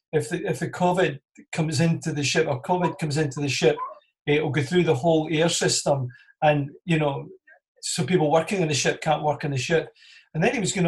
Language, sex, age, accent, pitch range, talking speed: English, male, 40-59, British, 150-180 Hz, 225 wpm